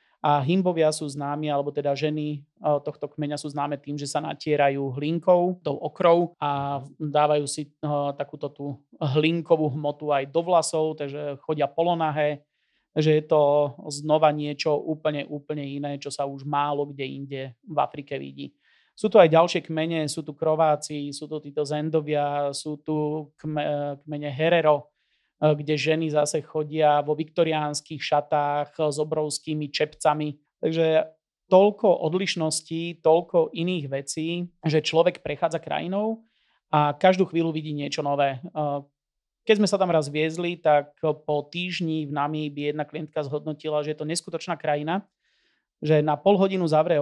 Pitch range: 145-160 Hz